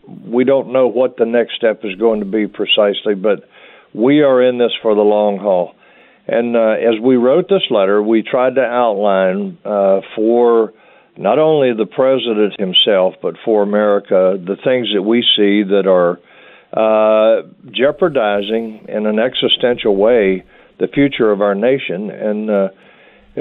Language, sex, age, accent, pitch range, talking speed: English, male, 50-69, American, 105-125 Hz, 160 wpm